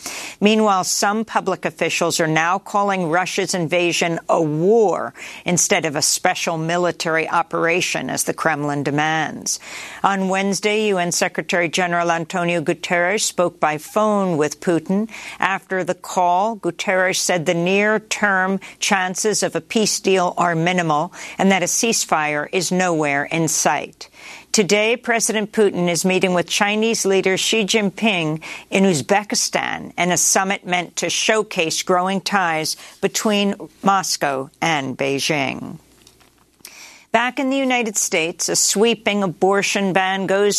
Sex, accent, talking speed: female, American, 130 wpm